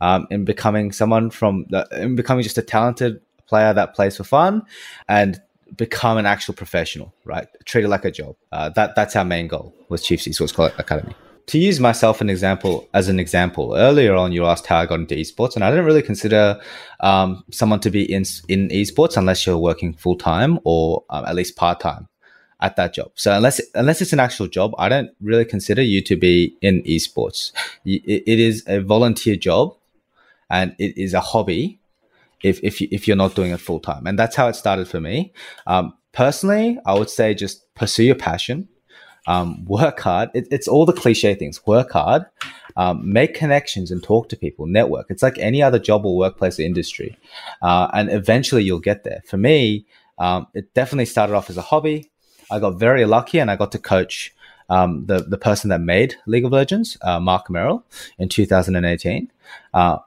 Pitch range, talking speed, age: 90-115 Hz, 200 wpm, 20-39